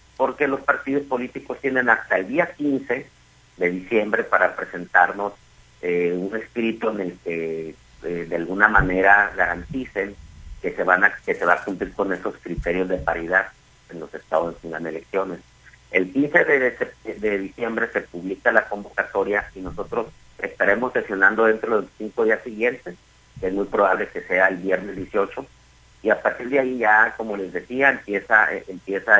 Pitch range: 90-120 Hz